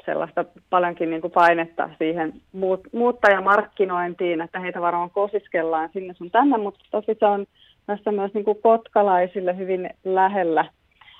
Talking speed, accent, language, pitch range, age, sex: 140 wpm, native, Finnish, 165-195 Hz, 30-49, female